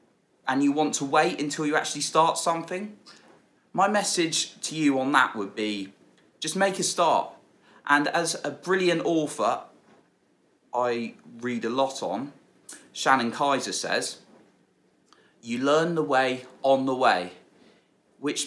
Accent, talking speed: British, 140 wpm